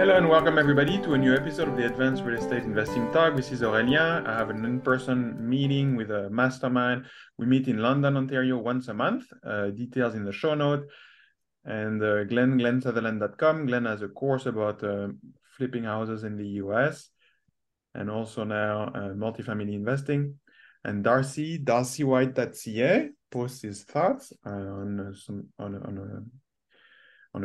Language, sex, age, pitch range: English, male, 20-39, 110-150 Hz